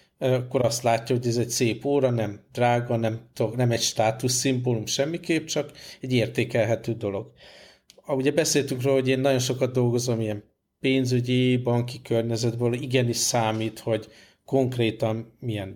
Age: 50-69